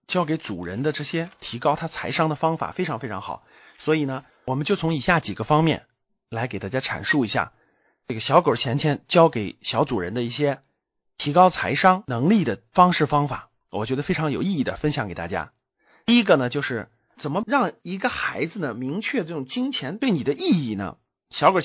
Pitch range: 145-230 Hz